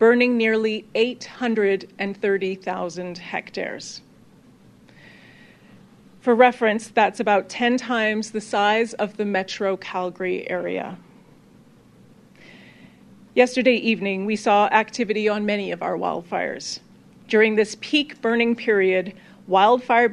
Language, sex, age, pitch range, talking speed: English, female, 40-59, 195-225 Hz, 100 wpm